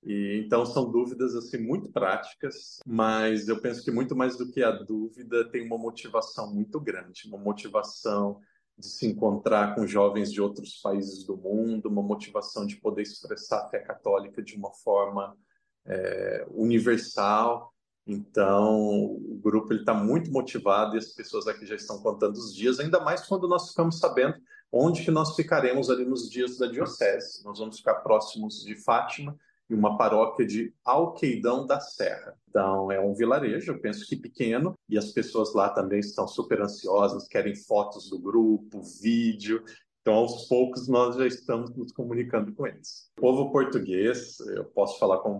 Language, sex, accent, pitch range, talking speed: Portuguese, male, Brazilian, 105-135 Hz, 170 wpm